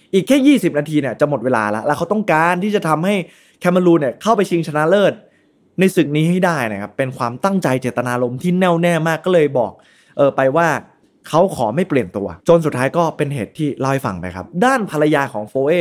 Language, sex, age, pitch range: Thai, male, 20-39, 120-170 Hz